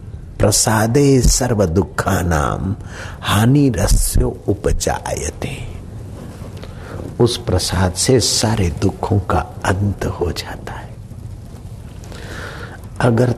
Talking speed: 75 wpm